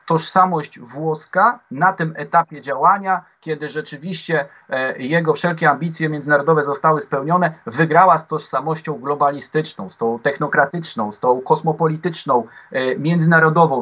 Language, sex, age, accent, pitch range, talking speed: Polish, male, 30-49, native, 145-175 Hz, 110 wpm